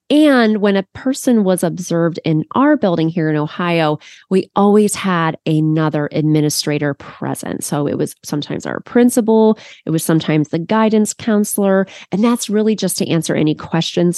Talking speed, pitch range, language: 160 wpm, 160-215 Hz, English